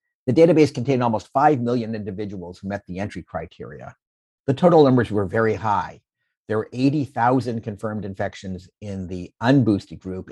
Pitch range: 95-130 Hz